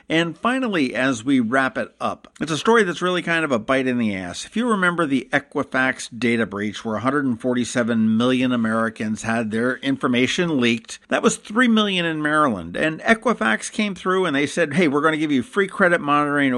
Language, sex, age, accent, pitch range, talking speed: English, male, 50-69, American, 115-160 Hz, 205 wpm